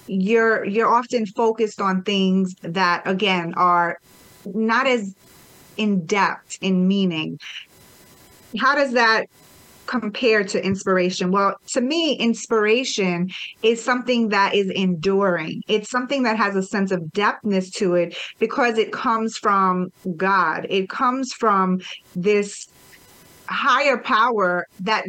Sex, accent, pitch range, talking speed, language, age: female, American, 190-235 Hz, 125 wpm, English, 30-49